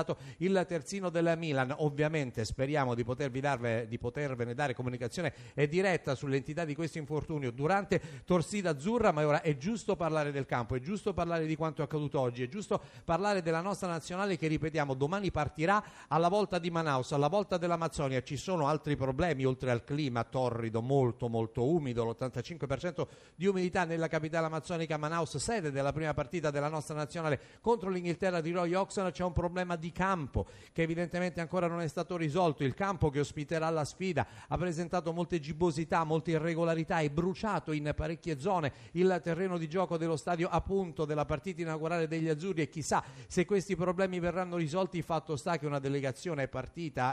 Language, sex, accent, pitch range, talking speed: Italian, male, native, 140-175 Hz, 175 wpm